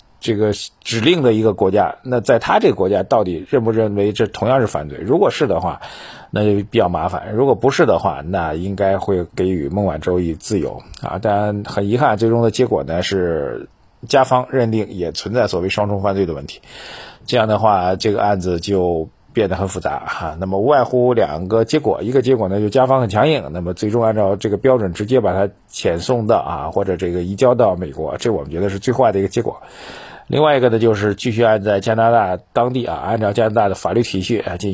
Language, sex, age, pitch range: Chinese, male, 50-69, 95-120 Hz